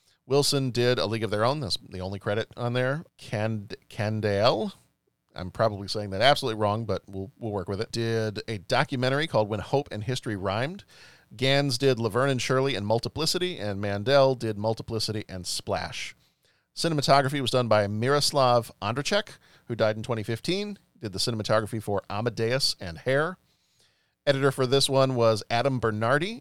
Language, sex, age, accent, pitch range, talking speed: English, male, 40-59, American, 110-140 Hz, 165 wpm